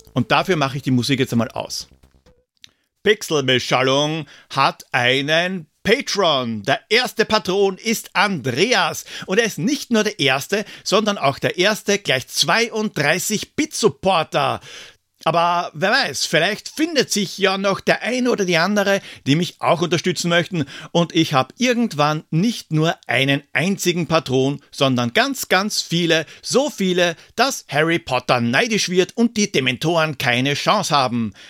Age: 50-69